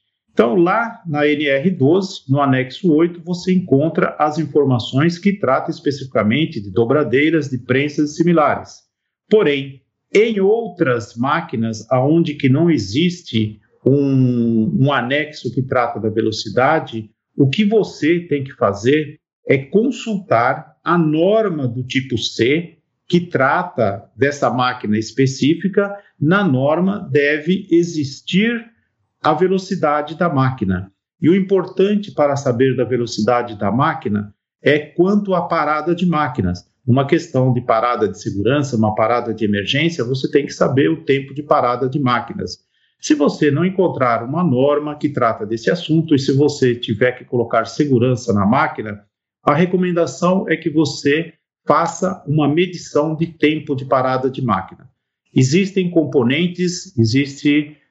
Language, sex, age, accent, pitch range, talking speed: Portuguese, male, 50-69, Brazilian, 125-170 Hz, 135 wpm